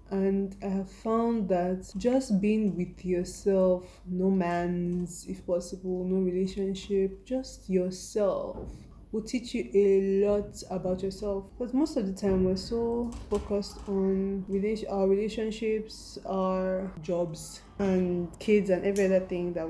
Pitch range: 185-220 Hz